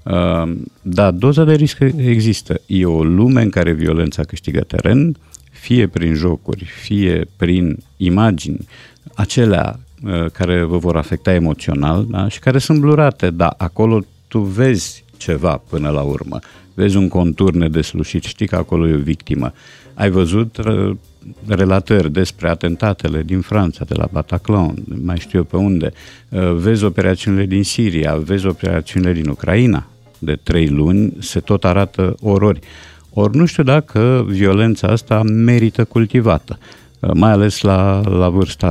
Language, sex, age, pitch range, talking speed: Romanian, male, 50-69, 85-110 Hz, 145 wpm